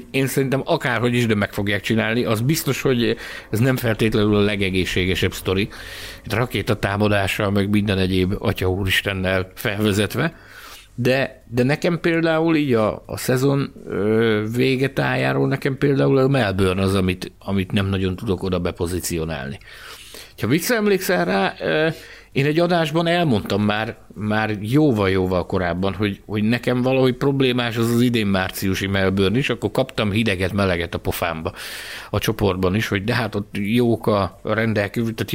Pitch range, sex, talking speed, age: 100-130 Hz, male, 145 wpm, 60-79